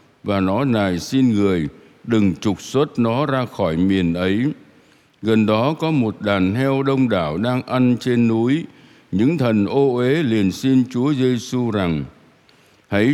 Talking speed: 165 wpm